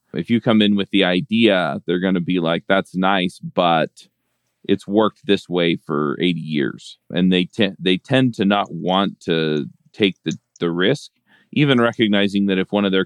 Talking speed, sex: 195 wpm, male